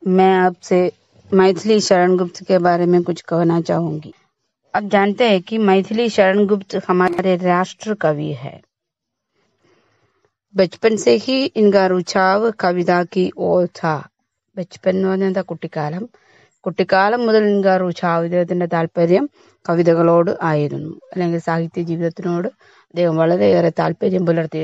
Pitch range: 170-195 Hz